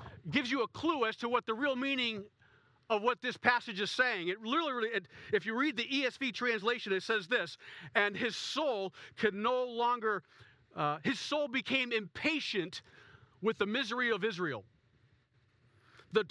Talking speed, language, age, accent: 160 wpm, English, 40-59, American